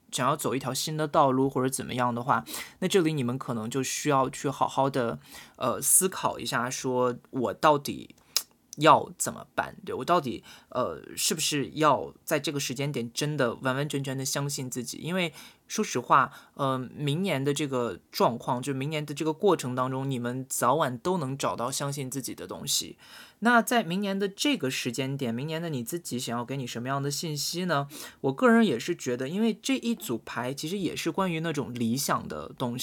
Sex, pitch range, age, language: male, 125-165 Hz, 20-39, Chinese